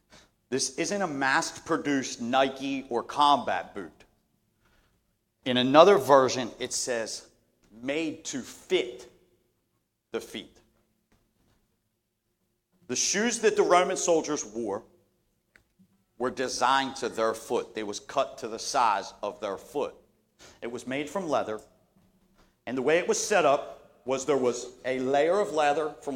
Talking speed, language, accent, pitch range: 135 wpm, English, American, 115-150 Hz